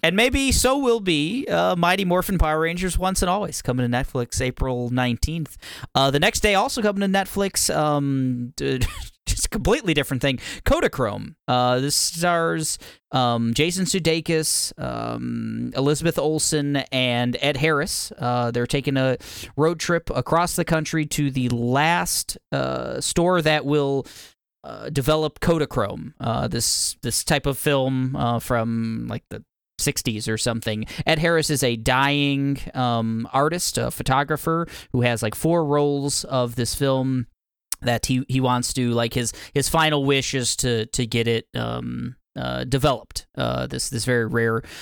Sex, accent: male, American